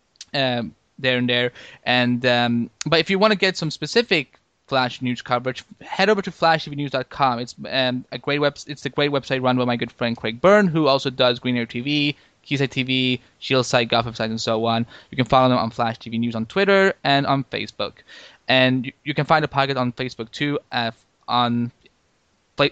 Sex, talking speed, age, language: male, 205 wpm, 10-29, English